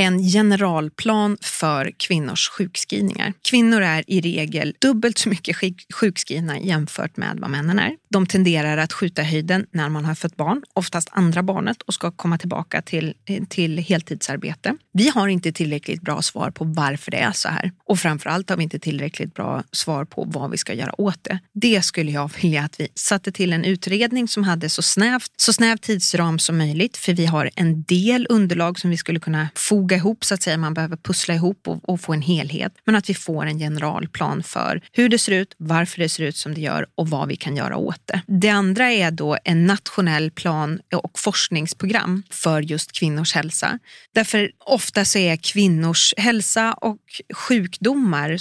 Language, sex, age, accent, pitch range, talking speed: Swedish, female, 30-49, native, 160-205 Hz, 190 wpm